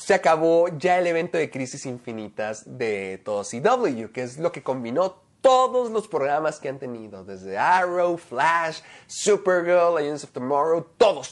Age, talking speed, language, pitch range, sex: 30-49, 160 wpm, Spanish, 145-200 Hz, male